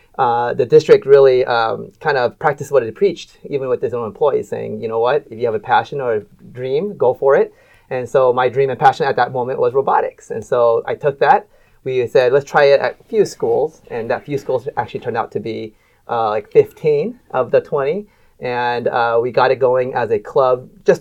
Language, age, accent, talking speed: English, 30-49, American, 230 wpm